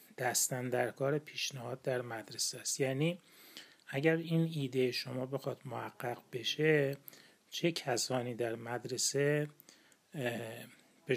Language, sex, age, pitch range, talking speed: Persian, male, 30-49, 125-150 Hz, 95 wpm